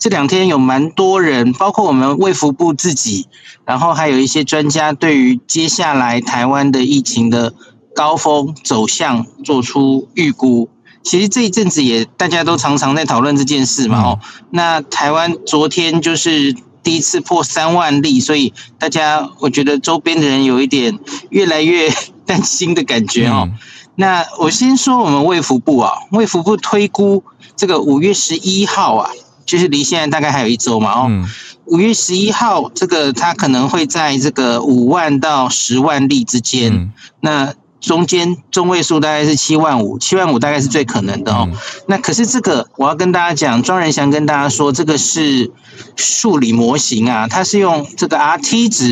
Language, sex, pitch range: Chinese, male, 130-175 Hz